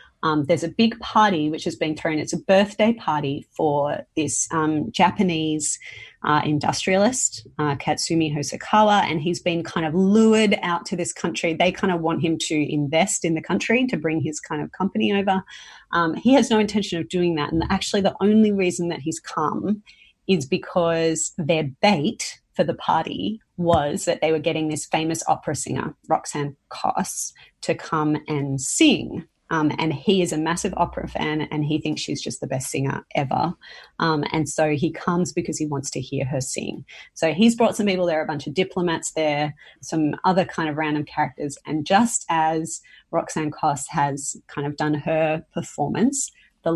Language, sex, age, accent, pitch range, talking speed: English, female, 30-49, Australian, 155-185 Hz, 185 wpm